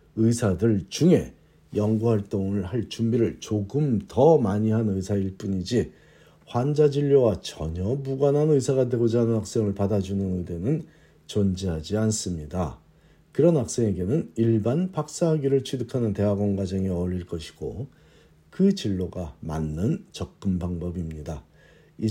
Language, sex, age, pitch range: Korean, male, 50-69, 90-120 Hz